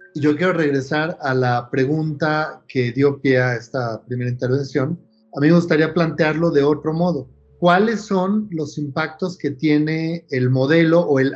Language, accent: Spanish, Mexican